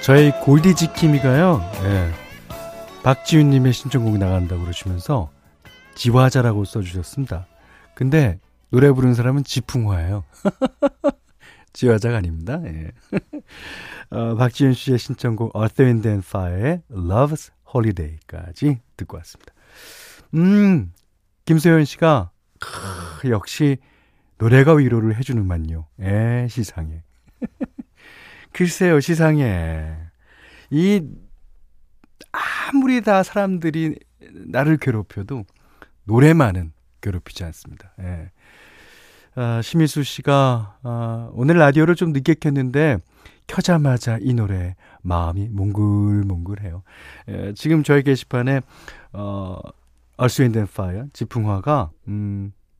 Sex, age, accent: male, 40-59, native